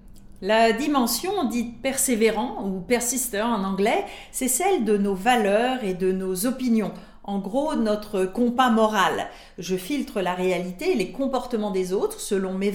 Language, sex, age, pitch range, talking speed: French, female, 40-59, 190-245 Hz, 170 wpm